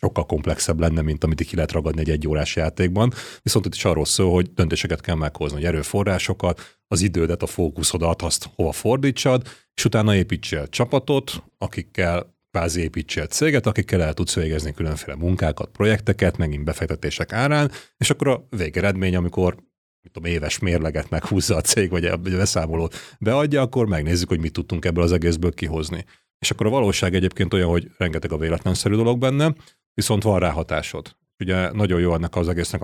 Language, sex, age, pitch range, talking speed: Hungarian, male, 30-49, 85-105 Hz, 170 wpm